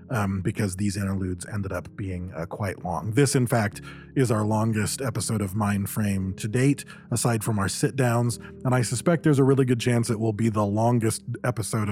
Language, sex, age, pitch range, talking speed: English, male, 30-49, 110-135 Hz, 195 wpm